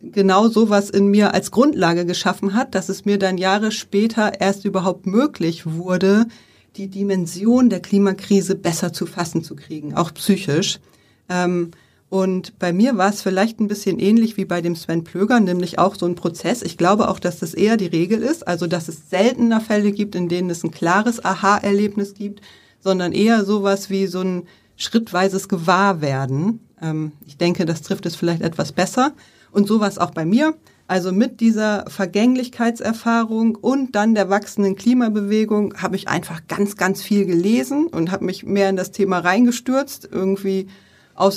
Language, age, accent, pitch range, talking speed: German, 30-49, German, 185-220 Hz, 170 wpm